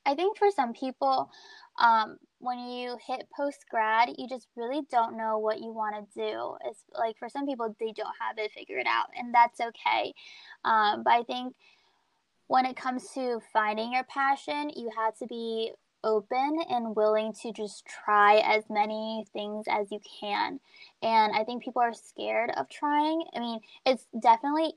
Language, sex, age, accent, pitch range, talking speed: English, female, 20-39, American, 220-260 Hz, 180 wpm